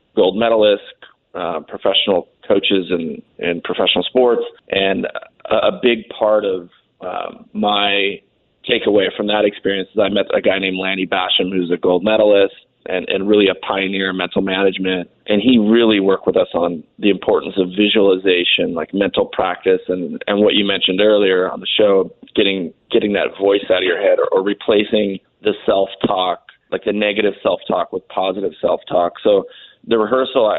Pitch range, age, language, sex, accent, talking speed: 95-110 Hz, 30-49, English, male, American, 170 wpm